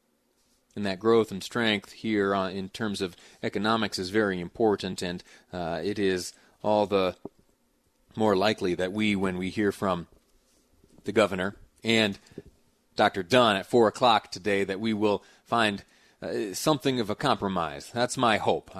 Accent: American